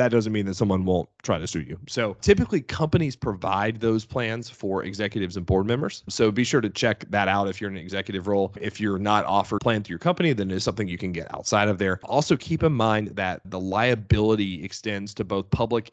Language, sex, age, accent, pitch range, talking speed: English, male, 30-49, American, 95-115 Hz, 235 wpm